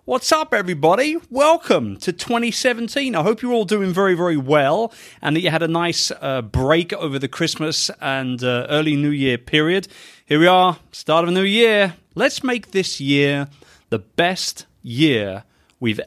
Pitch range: 140-190 Hz